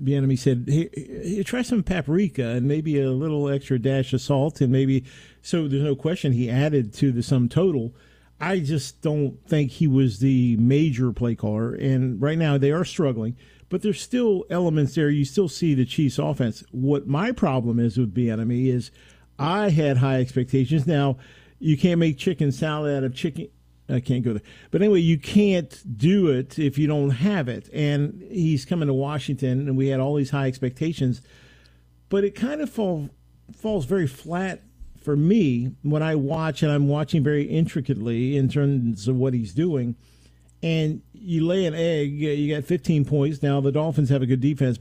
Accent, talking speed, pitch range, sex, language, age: American, 185 wpm, 130-160 Hz, male, English, 50-69